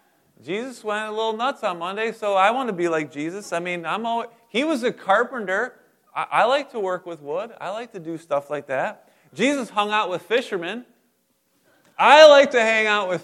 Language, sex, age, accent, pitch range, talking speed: English, male, 30-49, American, 150-240 Hz, 215 wpm